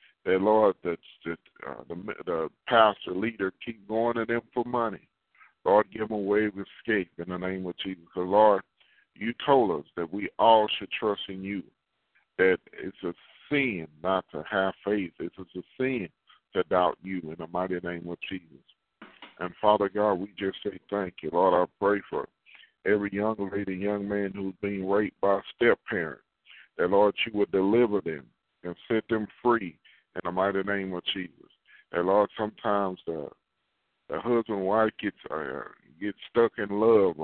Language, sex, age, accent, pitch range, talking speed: English, male, 50-69, American, 90-105 Hz, 180 wpm